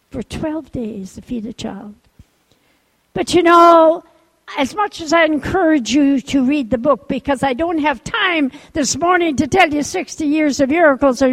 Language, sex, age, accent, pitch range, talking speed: English, female, 60-79, American, 220-305 Hz, 185 wpm